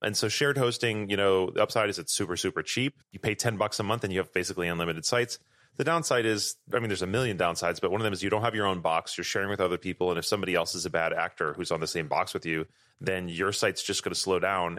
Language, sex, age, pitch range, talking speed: English, male, 30-49, 90-115 Hz, 295 wpm